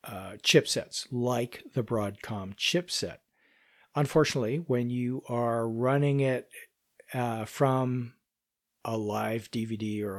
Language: English